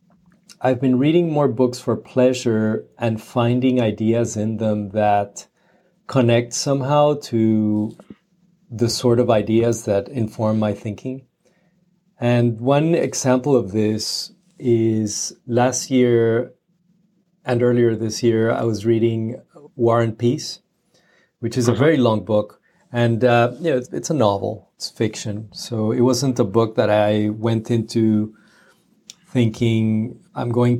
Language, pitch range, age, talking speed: English, 110-130 Hz, 40-59, 135 wpm